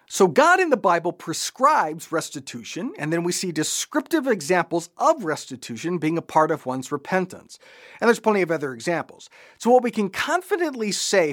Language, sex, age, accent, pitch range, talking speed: English, male, 40-59, American, 150-210 Hz, 175 wpm